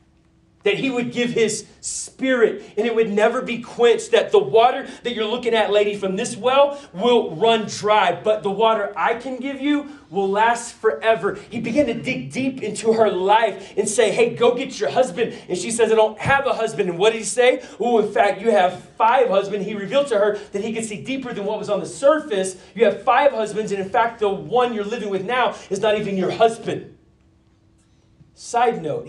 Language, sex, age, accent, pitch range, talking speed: English, male, 30-49, American, 190-235 Hz, 220 wpm